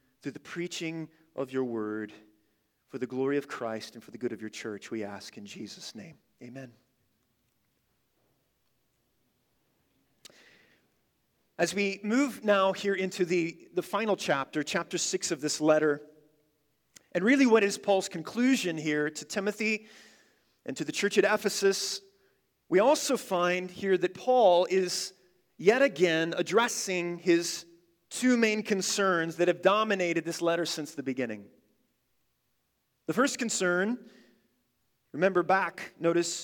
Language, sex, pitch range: English, male, 150-195 Hz